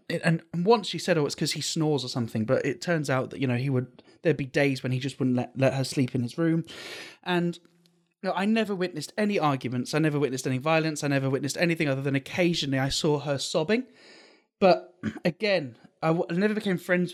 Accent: British